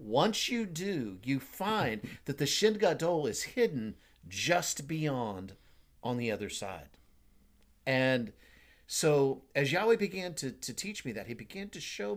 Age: 50-69